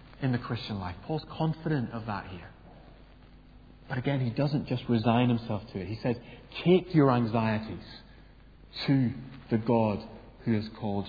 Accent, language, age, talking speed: British, English, 30-49, 155 wpm